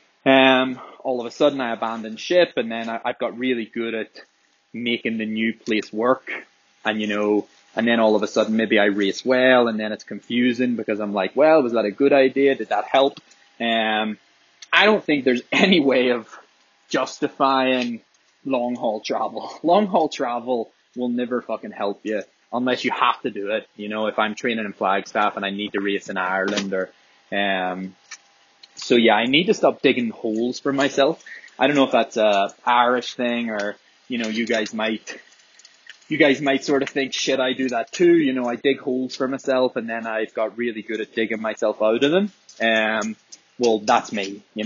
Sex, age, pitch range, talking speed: male, 20-39, 110-130 Hz, 205 wpm